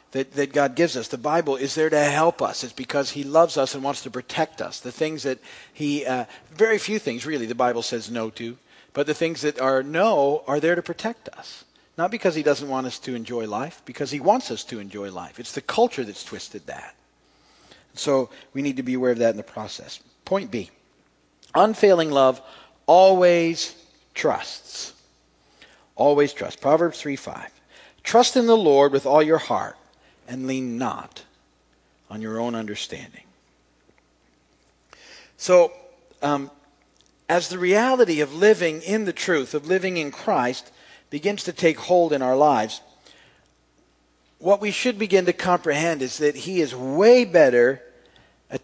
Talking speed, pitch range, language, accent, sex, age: 175 wpm, 120-175 Hz, English, American, male, 50-69